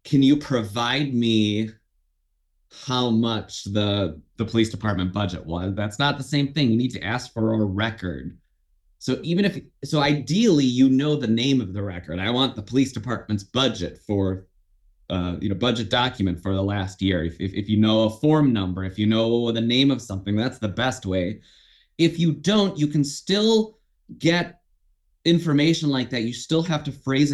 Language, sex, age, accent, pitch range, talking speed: English, male, 30-49, American, 100-135 Hz, 190 wpm